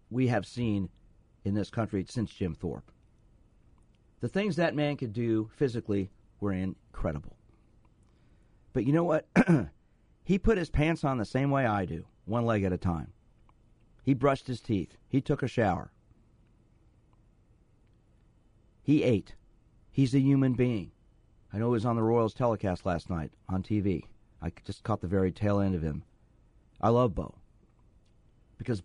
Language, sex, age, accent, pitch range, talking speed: English, male, 50-69, American, 105-155 Hz, 160 wpm